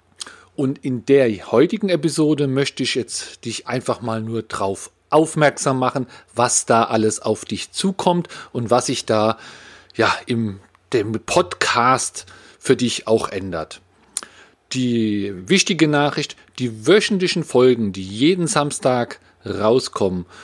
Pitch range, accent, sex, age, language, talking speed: 110-145 Hz, German, male, 40-59, German, 125 wpm